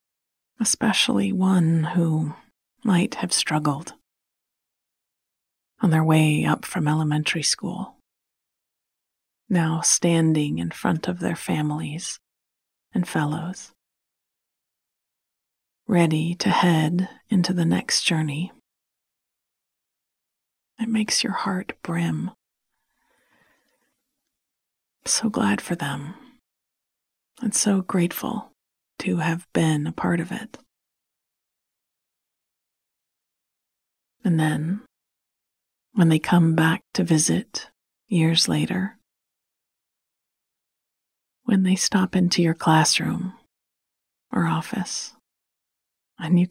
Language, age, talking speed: English, 30-49, 90 wpm